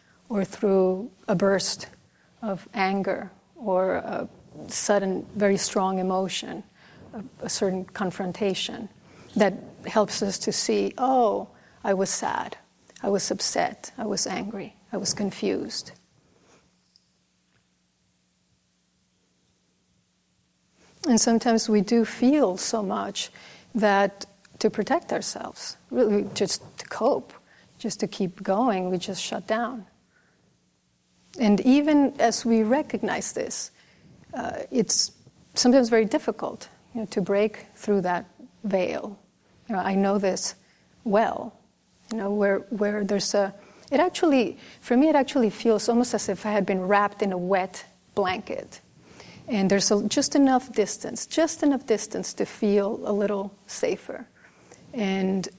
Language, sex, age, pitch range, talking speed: English, female, 40-59, 195-230 Hz, 125 wpm